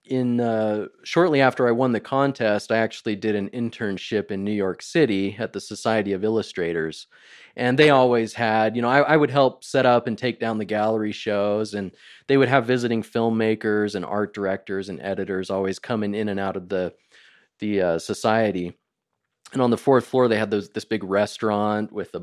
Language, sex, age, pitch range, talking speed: English, male, 30-49, 105-125 Hz, 200 wpm